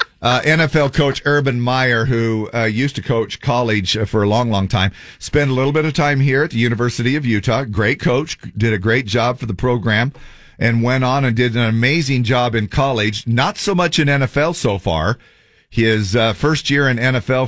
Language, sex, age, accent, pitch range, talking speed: English, male, 40-59, American, 105-130 Hz, 205 wpm